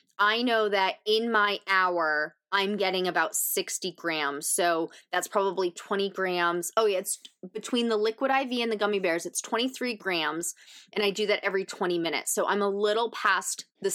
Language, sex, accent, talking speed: English, female, American, 185 wpm